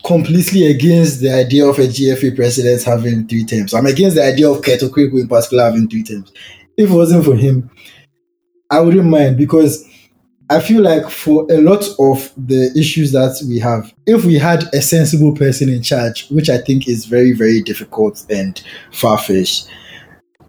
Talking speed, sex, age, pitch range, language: 180 wpm, male, 20-39, 115-150 Hz, English